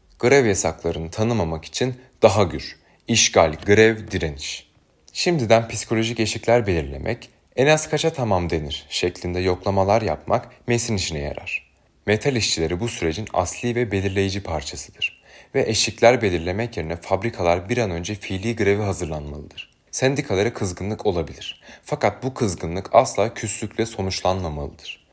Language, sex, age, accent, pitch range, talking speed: Turkish, male, 30-49, native, 85-115 Hz, 125 wpm